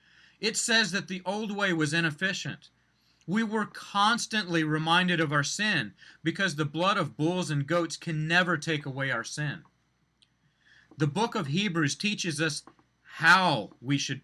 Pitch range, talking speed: 150-190 Hz, 155 wpm